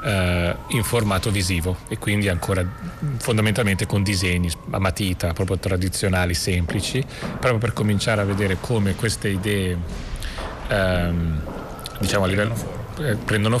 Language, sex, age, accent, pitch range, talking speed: Italian, male, 30-49, native, 95-115 Hz, 115 wpm